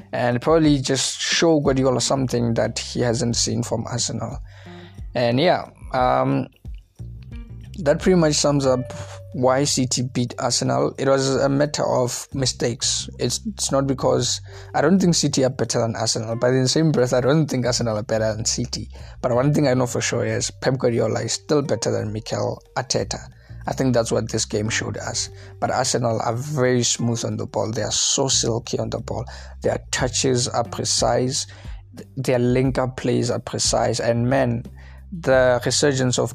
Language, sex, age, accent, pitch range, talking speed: English, male, 20-39, South African, 110-130 Hz, 180 wpm